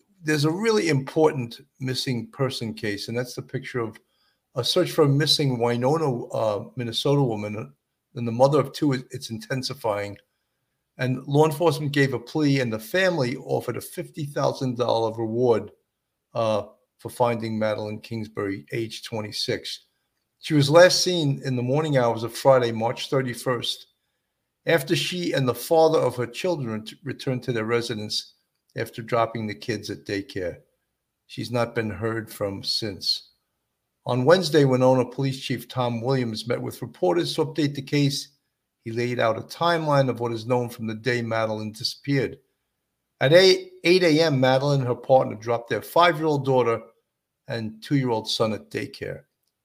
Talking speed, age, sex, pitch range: 155 wpm, 50-69, male, 115-140 Hz